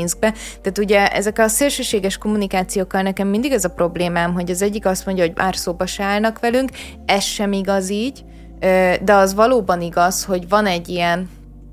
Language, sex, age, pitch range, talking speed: Hungarian, female, 20-39, 170-200 Hz, 180 wpm